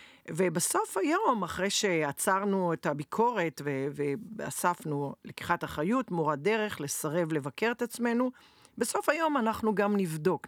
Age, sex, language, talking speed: 50-69, female, Hebrew, 120 wpm